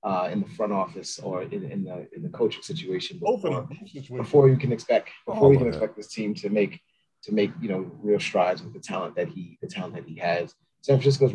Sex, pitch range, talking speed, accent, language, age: male, 105-160 Hz, 235 wpm, American, English, 30-49